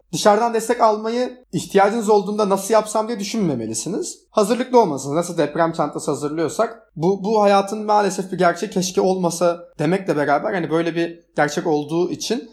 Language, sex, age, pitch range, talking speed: Turkish, male, 30-49, 150-205 Hz, 150 wpm